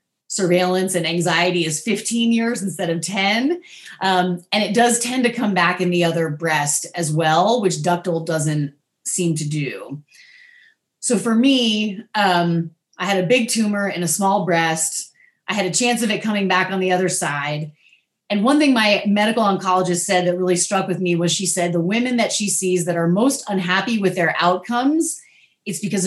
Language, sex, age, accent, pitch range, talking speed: English, female, 30-49, American, 175-220 Hz, 190 wpm